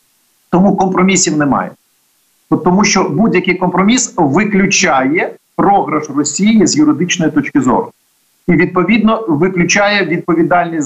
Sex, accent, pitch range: male, native, 145-195 Hz